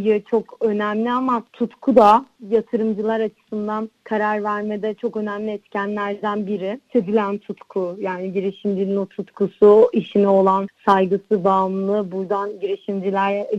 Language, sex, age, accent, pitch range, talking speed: Turkish, female, 30-49, native, 200-225 Hz, 110 wpm